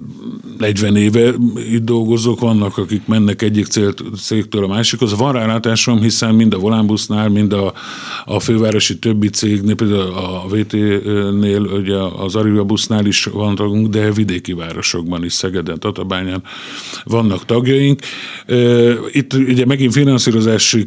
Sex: male